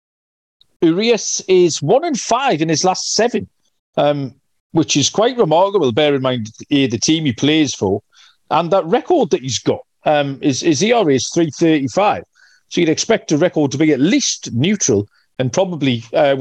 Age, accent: 40-59, British